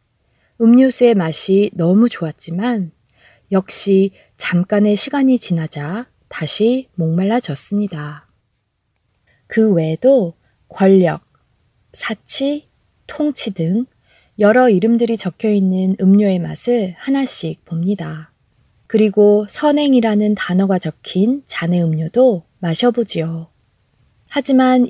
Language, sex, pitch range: Korean, female, 160-225 Hz